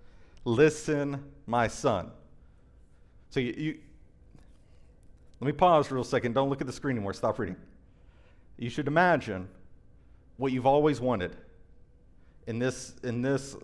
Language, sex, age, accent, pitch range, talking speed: English, male, 40-59, American, 125-185 Hz, 140 wpm